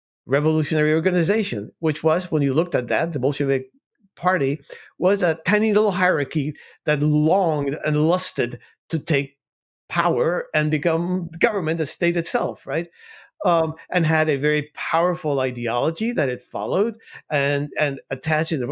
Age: 50-69